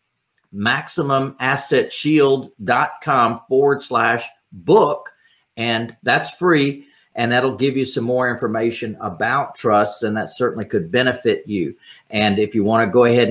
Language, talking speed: English, 130 wpm